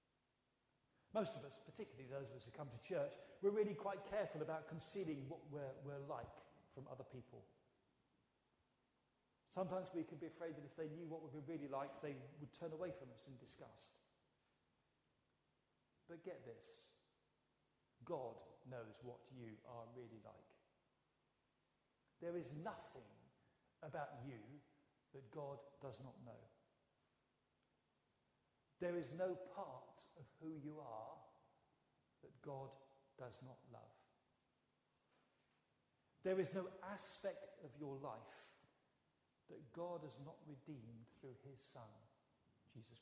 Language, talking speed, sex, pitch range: English, 130 wpm, male, 135-185 Hz